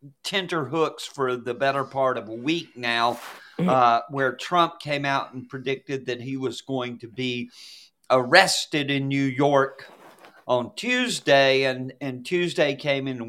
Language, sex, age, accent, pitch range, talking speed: English, male, 50-69, American, 130-175 Hz, 150 wpm